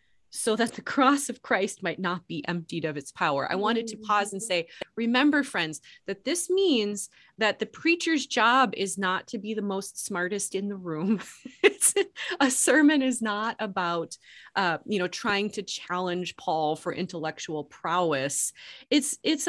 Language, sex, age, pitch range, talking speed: English, female, 30-49, 165-230 Hz, 170 wpm